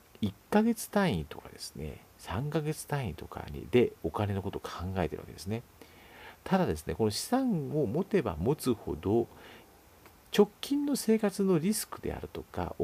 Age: 50-69